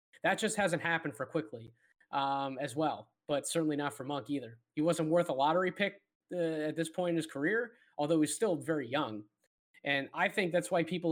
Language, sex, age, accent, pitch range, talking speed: English, male, 20-39, American, 150-175 Hz, 210 wpm